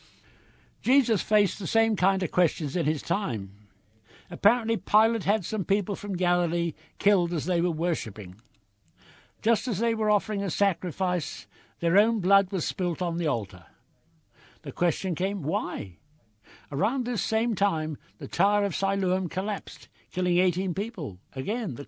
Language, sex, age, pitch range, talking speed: English, male, 60-79, 140-205 Hz, 150 wpm